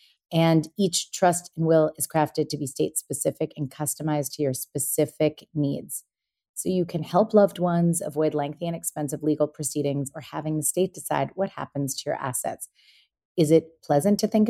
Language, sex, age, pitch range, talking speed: English, female, 30-49, 140-170 Hz, 180 wpm